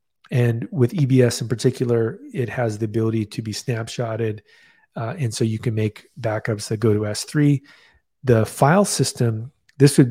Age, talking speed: 30-49, 165 wpm